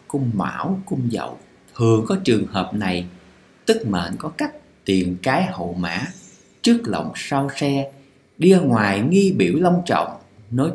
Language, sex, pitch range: Vietnamese, male, 105-160 Hz